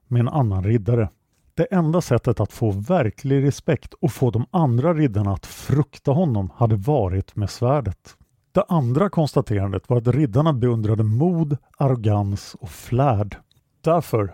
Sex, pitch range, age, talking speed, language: male, 105-145 Hz, 50-69, 145 wpm, English